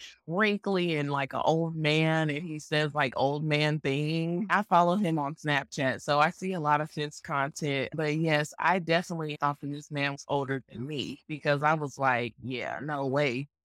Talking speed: 195 wpm